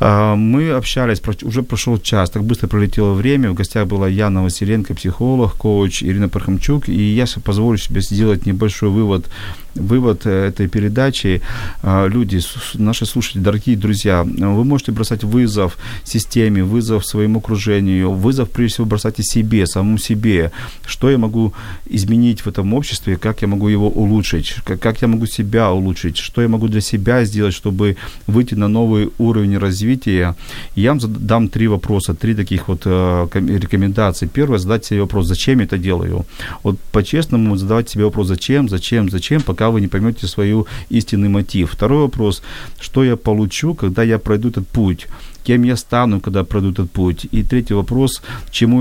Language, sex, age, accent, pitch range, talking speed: Ukrainian, male, 40-59, native, 95-115 Hz, 160 wpm